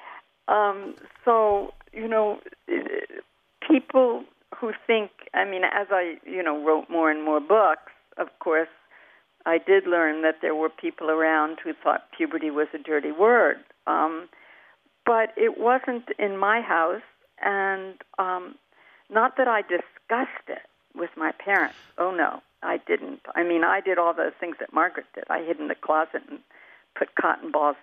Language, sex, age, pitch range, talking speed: English, female, 60-79, 160-220 Hz, 160 wpm